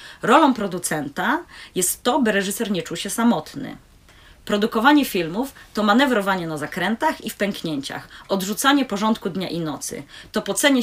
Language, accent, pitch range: Polish, native, 180-235 Hz